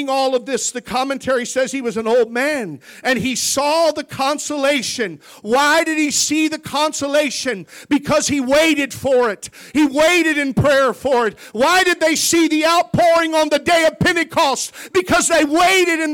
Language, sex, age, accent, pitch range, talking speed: English, male, 50-69, American, 275-335 Hz, 180 wpm